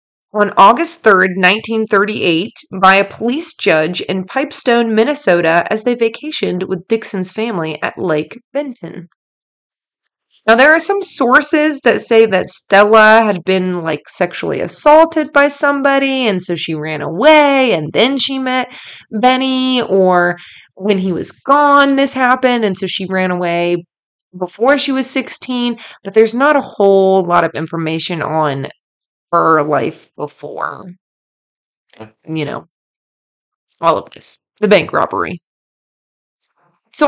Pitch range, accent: 185-260 Hz, American